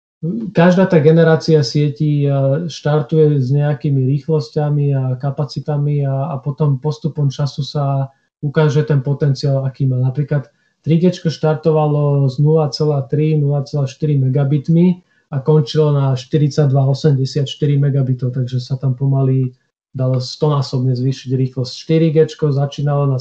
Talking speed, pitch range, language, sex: 115 wpm, 135-155 Hz, Slovak, male